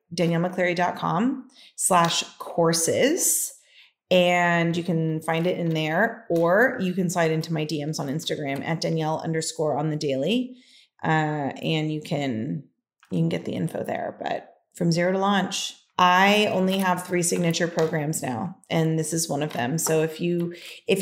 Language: English